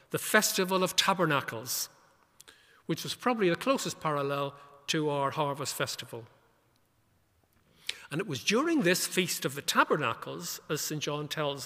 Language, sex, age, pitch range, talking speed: English, male, 60-79, 130-190 Hz, 140 wpm